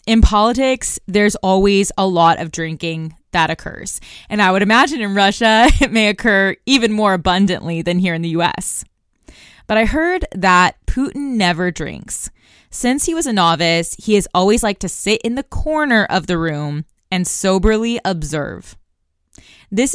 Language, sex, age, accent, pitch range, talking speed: English, female, 20-39, American, 175-220 Hz, 165 wpm